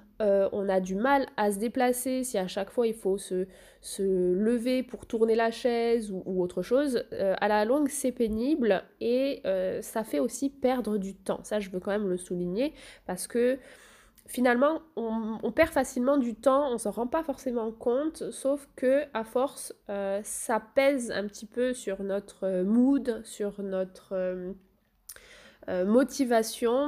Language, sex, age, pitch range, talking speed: French, female, 20-39, 200-265 Hz, 180 wpm